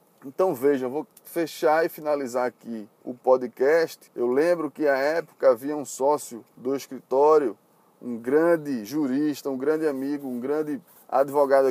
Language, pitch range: Portuguese, 140-185 Hz